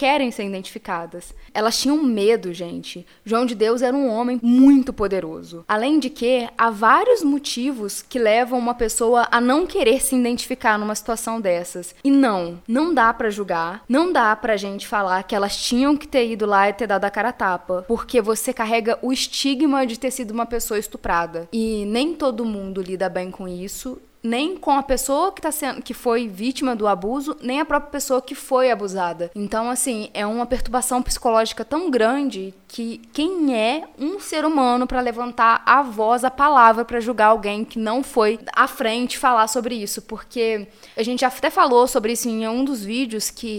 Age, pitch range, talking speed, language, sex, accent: 10-29, 210-260 Hz, 190 wpm, Portuguese, female, Brazilian